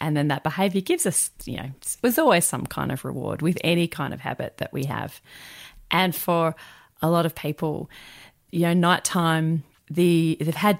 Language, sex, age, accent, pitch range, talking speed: English, female, 30-49, Australian, 150-195 Hz, 190 wpm